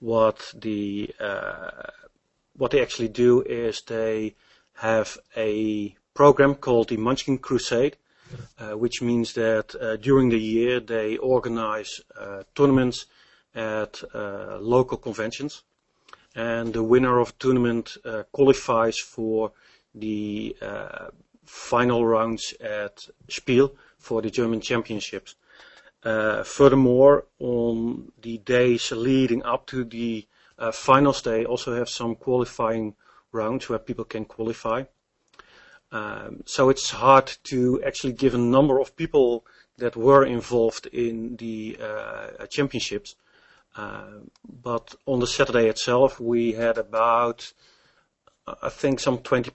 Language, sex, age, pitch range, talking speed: English, male, 30-49, 110-125 Hz, 125 wpm